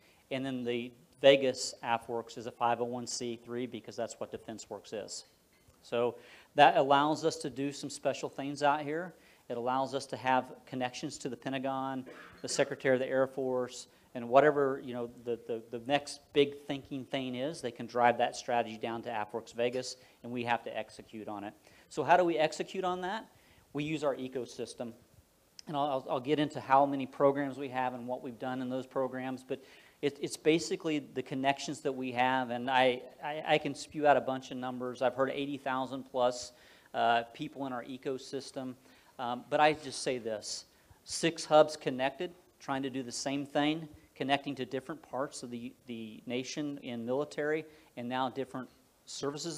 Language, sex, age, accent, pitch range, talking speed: English, male, 40-59, American, 120-145 Hz, 180 wpm